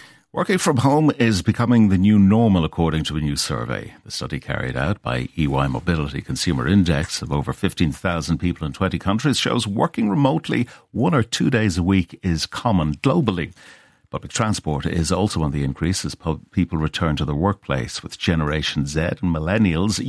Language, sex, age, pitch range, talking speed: English, male, 60-79, 85-110 Hz, 175 wpm